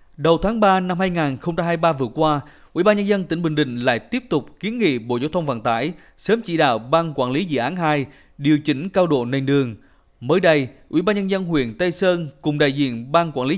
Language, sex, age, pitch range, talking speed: Vietnamese, male, 20-39, 135-180 Hz, 240 wpm